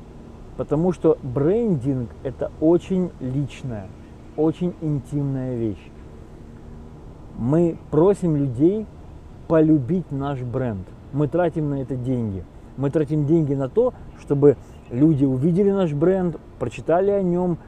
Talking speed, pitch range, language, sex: 110 wpm, 120-170 Hz, Russian, male